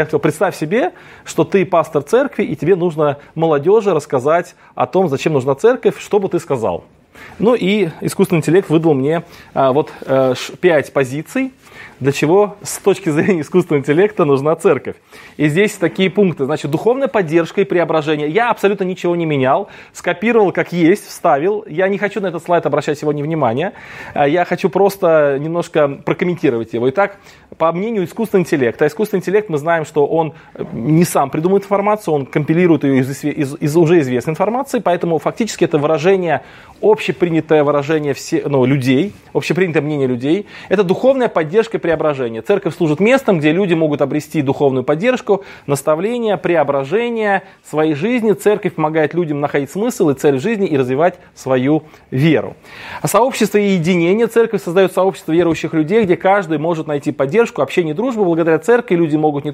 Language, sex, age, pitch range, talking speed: Russian, male, 20-39, 150-200 Hz, 160 wpm